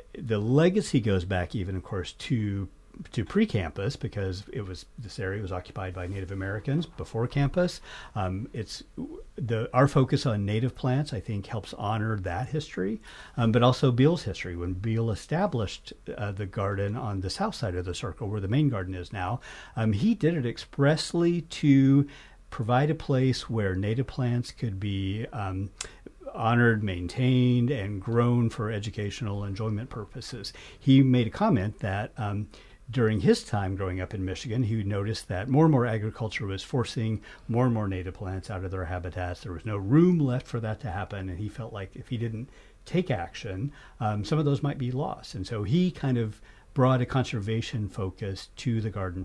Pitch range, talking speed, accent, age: 95-130 Hz, 185 wpm, American, 50-69